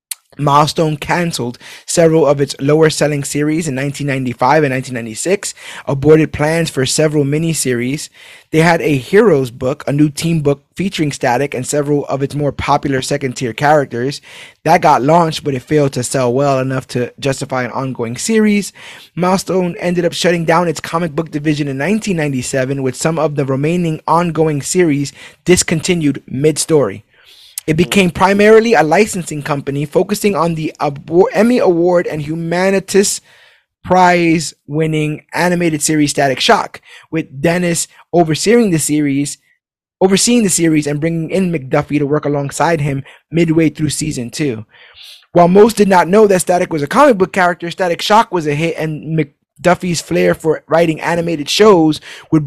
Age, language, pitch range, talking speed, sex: 20-39, English, 145-175 Hz, 155 wpm, male